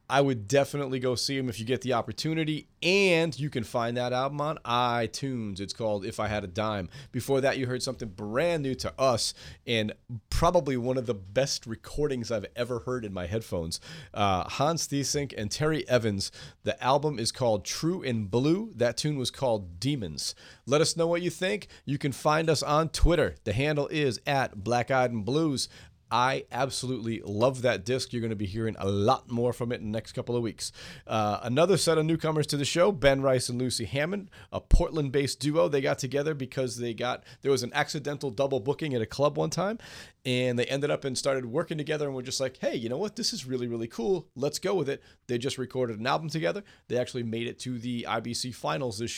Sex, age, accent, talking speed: male, 40-59, American, 220 wpm